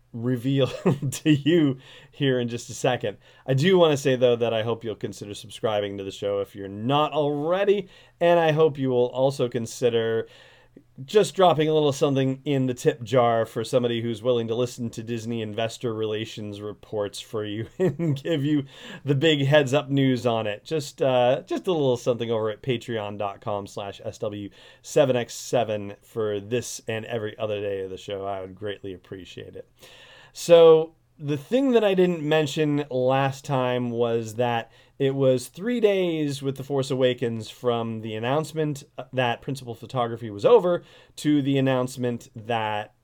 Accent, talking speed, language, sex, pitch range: American, 170 wpm, English, male, 115-145 Hz